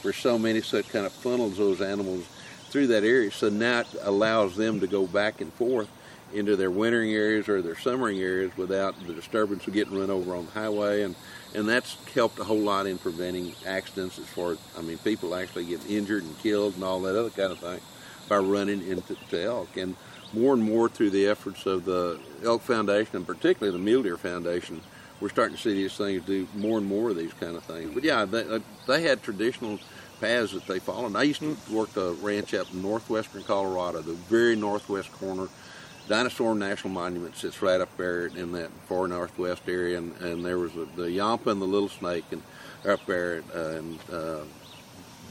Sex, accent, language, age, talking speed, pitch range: male, American, English, 50-69, 210 wpm, 90-105 Hz